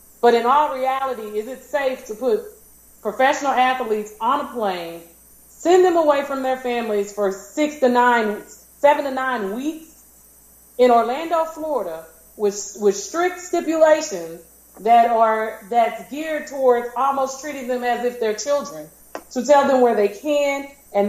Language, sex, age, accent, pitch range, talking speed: English, female, 30-49, American, 210-270 Hz, 155 wpm